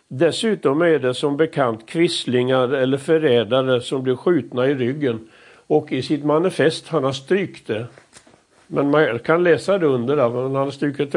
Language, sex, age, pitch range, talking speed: Swedish, male, 60-79, 130-160 Hz, 170 wpm